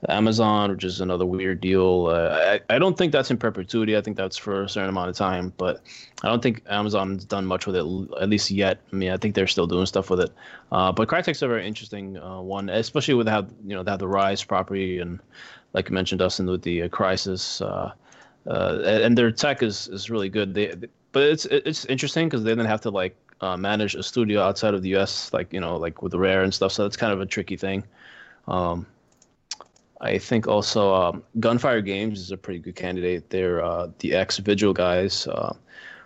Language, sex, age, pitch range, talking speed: English, male, 20-39, 95-115 Hz, 225 wpm